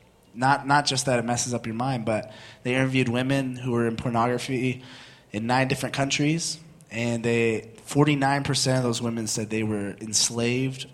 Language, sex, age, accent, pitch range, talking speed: English, male, 20-39, American, 115-140 Hz, 180 wpm